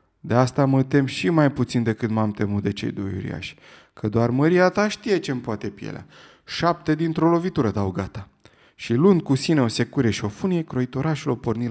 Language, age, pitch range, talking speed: Romanian, 20-39, 115-165 Hz, 200 wpm